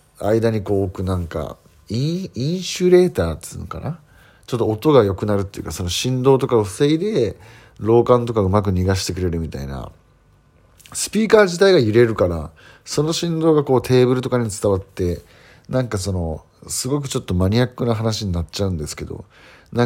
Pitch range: 90-135 Hz